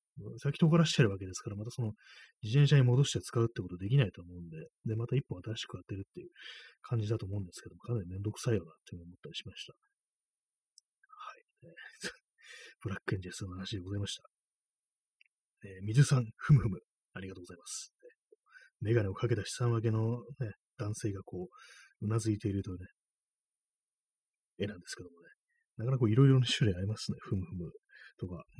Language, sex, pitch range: Japanese, male, 100-145 Hz